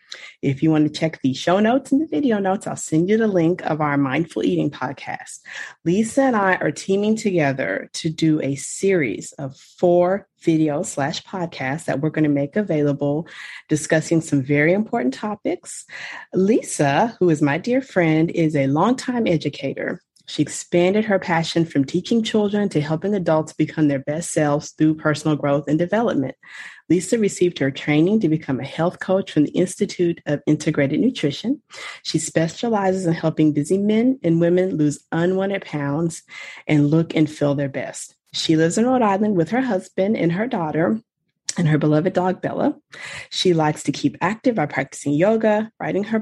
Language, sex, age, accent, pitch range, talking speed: English, female, 30-49, American, 150-200 Hz, 175 wpm